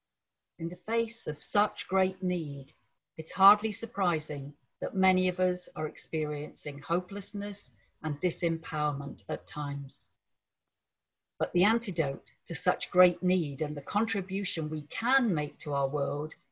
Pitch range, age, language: 155-205 Hz, 50-69, English